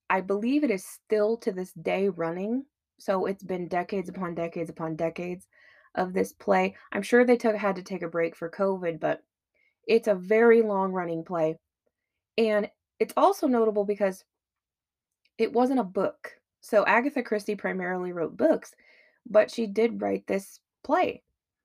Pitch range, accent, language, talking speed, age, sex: 185-230 Hz, American, English, 160 wpm, 20-39, female